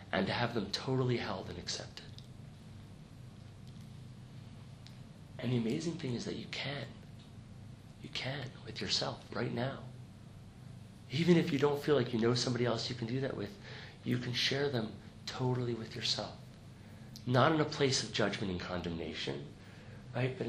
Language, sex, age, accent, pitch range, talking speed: English, male, 40-59, American, 115-135 Hz, 160 wpm